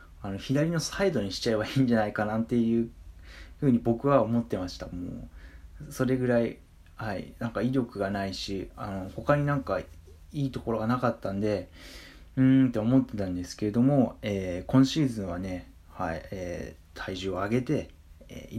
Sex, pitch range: male, 90-125 Hz